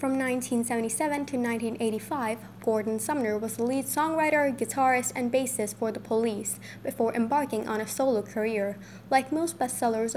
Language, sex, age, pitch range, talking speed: English, female, 10-29, 220-270 Hz, 150 wpm